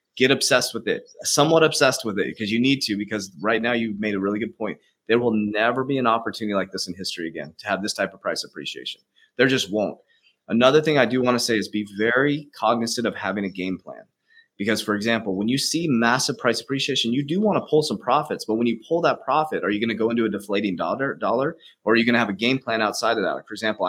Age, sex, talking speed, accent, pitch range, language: 30-49, male, 260 wpm, American, 105-130 Hz, English